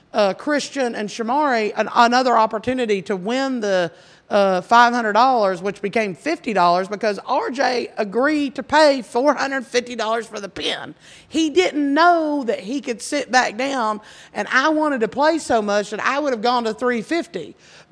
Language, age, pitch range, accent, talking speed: English, 50-69, 215-290 Hz, American, 155 wpm